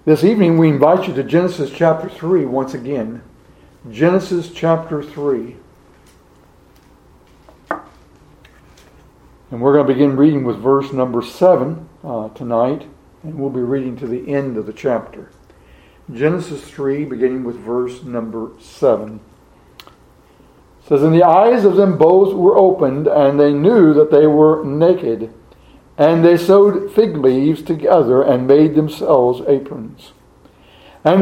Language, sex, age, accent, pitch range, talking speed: English, male, 60-79, American, 135-190 Hz, 135 wpm